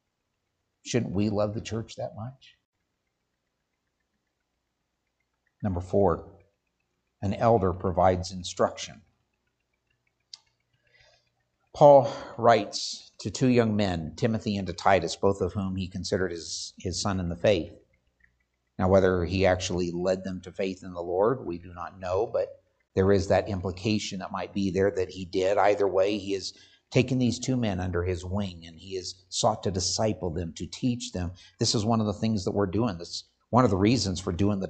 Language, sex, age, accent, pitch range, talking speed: English, male, 60-79, American, 85-100 Hz, 170 wpm